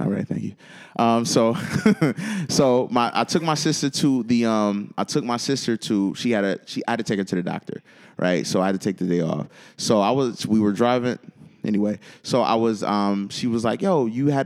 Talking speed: 240 wpm